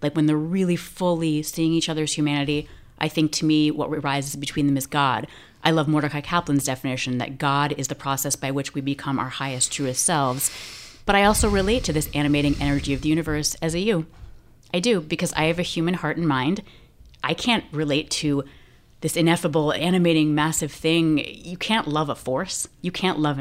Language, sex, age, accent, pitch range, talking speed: English, female, 30-49, American, 145-175 Hz, 200 wpm